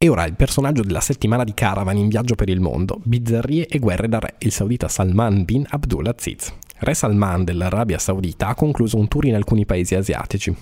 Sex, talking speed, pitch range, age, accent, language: male, 205 wpm, 95-115 Hz, 20-39, native, Italian